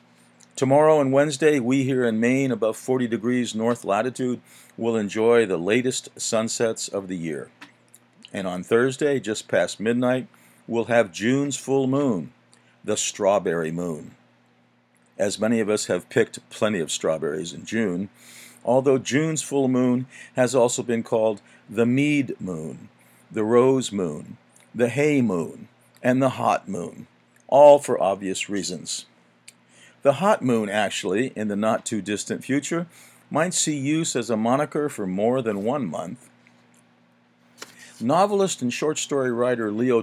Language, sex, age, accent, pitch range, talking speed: English, male, 50-69, American, 95-135 Hz, 140 wpm